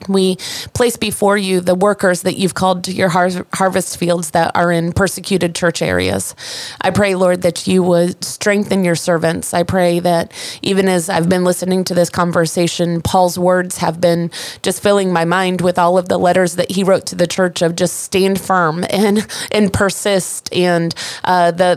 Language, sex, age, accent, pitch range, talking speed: English, female, 30-49, American, 175-195 Hz, 190 wpm